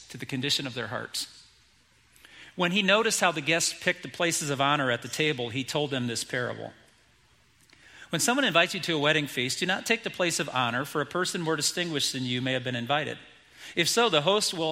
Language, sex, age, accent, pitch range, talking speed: English, male, 40-59, American, 125-170 Hz, 225 wpm